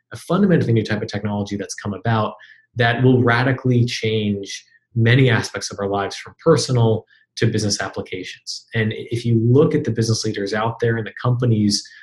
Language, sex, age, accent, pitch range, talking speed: English, male, 20-39, American, 105-125 Hz, 180 wpm